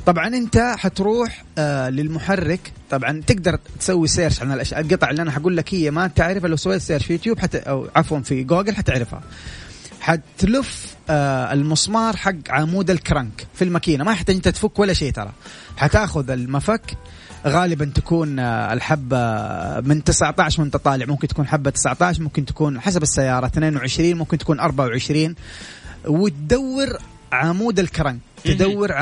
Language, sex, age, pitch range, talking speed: Arabic, male, 30-49, 140-190 Hz, 145 wpm